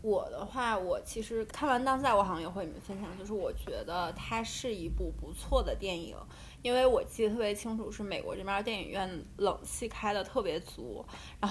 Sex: female